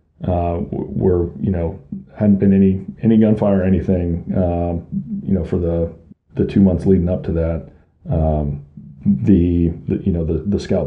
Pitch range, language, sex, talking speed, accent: 85-100 Hz, English, male, 175 wpm, American